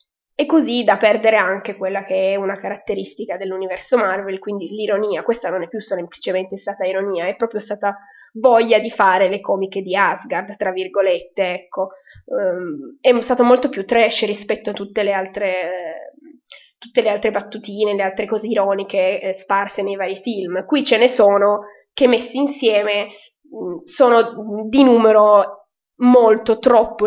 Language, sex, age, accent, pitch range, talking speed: Italian, female, 20-39, native, 195-250 Hz, 160 wpm